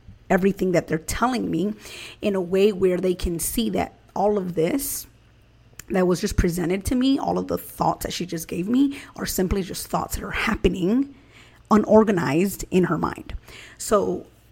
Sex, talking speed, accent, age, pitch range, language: female, 180 wpm, American, 30-49, 160-195 Hz, English